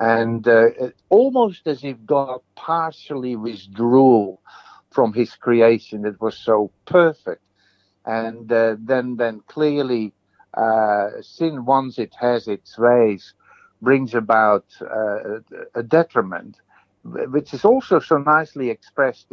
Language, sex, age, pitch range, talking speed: English, male, 60-79, 110-140 Hz, 120 wpm